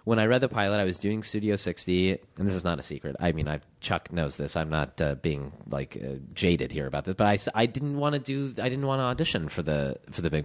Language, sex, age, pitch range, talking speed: English, male, 30-49, 90-105 Hz, 280 wpm